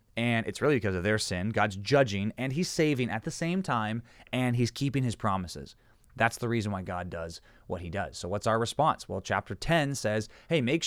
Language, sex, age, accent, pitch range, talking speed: English, male, 30-49, American, 100-130 Hz, 220 wpm